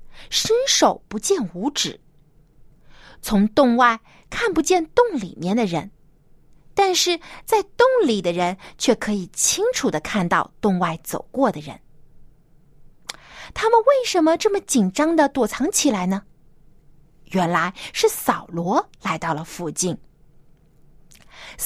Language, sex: Chinese, female